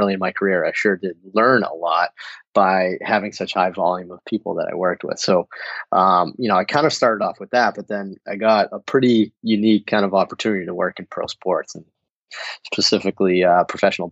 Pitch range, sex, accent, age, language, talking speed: 95-110 Hz, male, American, 30-49, English, 215 wpm